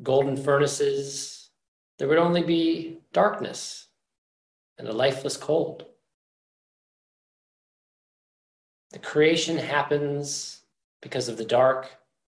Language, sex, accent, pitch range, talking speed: English, male, American, 120-150 Hz, 90 wpm